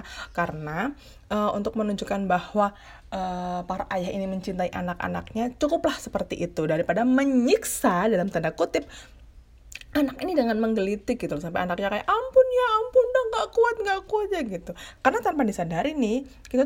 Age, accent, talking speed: 20-39, native, 155 wpm